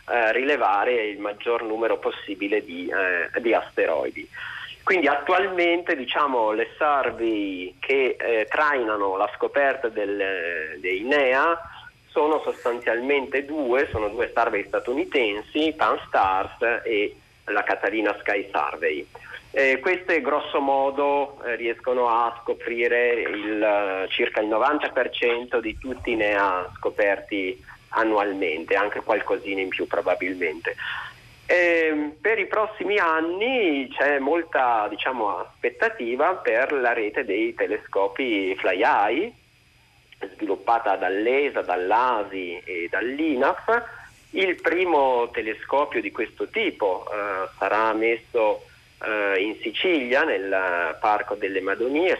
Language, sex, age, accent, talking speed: Italian, male, 40-59, native, 110 wpm